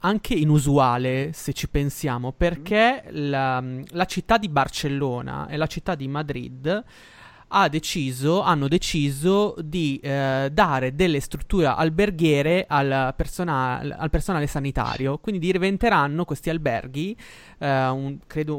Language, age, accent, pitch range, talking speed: Italian, 20-39, native, 130-155 Hz, 125 wpm